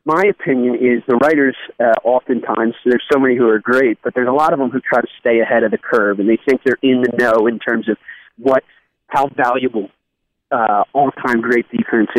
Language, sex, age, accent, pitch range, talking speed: English, male, 30-49, American, 120-150 Hz, 215 wpm